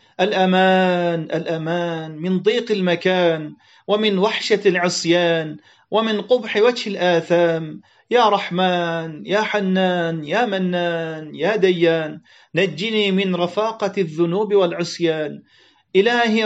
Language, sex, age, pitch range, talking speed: Turkish, male, 40-59, 170-205 Hz, 95 wpm